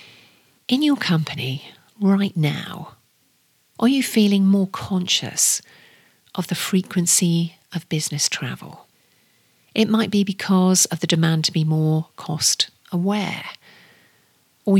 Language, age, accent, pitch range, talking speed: English, 40-59, British, 165-195 Hz, 120 wpm